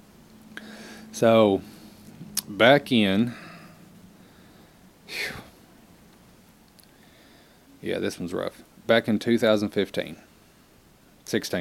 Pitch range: 95-115 Hz